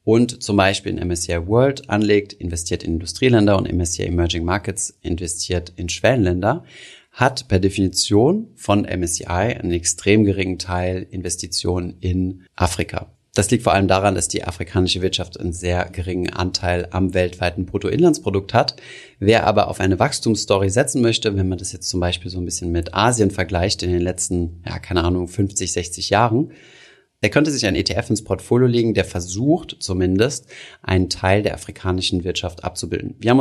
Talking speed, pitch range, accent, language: 165 wpm, 90-110 Hz, German, German